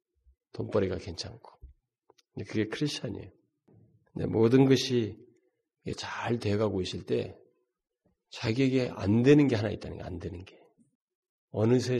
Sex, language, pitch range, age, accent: male, Korean, 105-150 Hz, 40-59, native